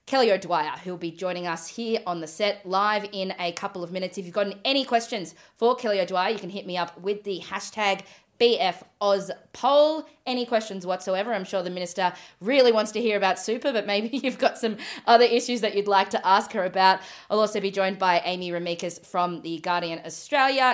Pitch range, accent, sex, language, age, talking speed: 180-225 Hz, Australian, female, English, 20-39, 210 wpm